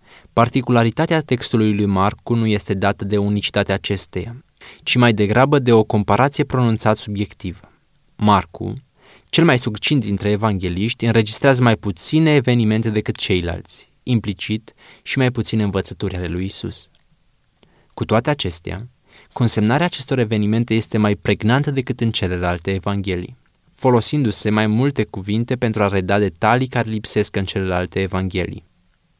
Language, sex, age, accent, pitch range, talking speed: Romanian, male, 20-39, native, 100-125 Hz, 130 wpm